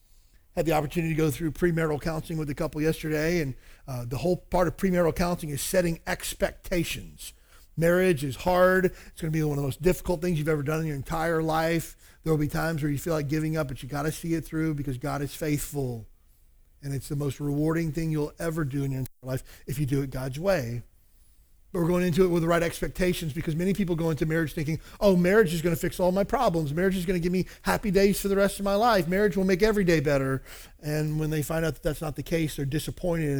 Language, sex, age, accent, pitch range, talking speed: English, male, 40-59, American, 135-170 Hz, 245 wpm